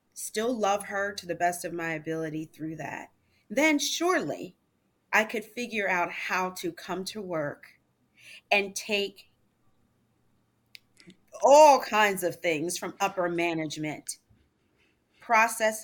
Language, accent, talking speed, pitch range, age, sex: English, American, 120 wpm, 165-215 Hz, 30-49, female